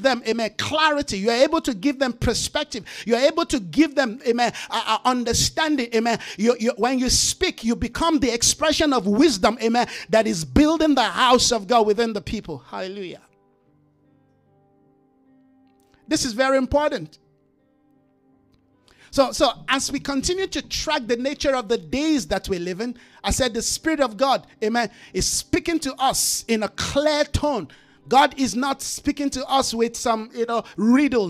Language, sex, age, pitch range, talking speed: English, male, 50-69, 230-295 Hz, 175 wpm